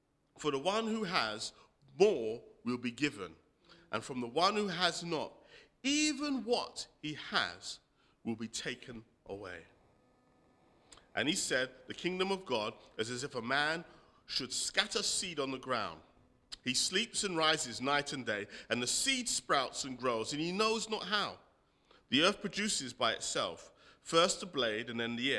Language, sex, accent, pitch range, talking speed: English, male, British, 115-180 Hz, 170 wpm